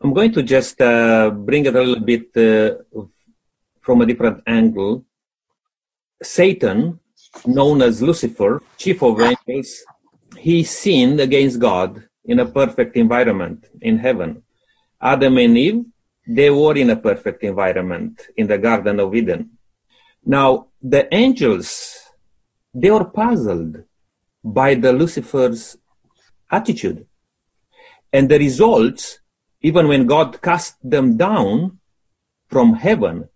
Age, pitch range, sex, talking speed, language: 30-49, 140-230 Hz, male, 120 wpm, English